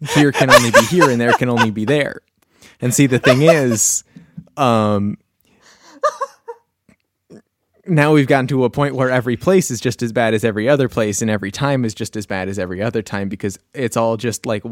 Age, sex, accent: 20-39, male, American